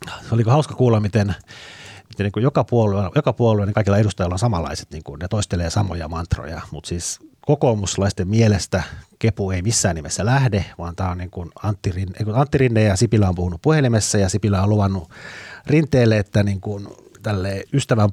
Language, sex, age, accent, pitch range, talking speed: Finnish, male, 30-49, native, 90-110 Hz, 175 wpm